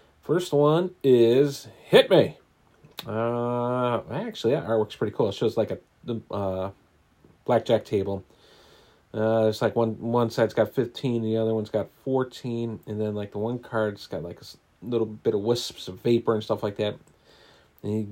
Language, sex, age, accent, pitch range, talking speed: English, male, 30-49, American, 110-140 Hz, 175 wpm